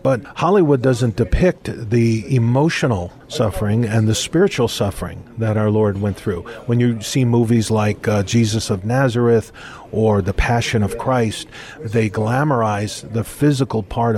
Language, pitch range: English, 110-135 Hz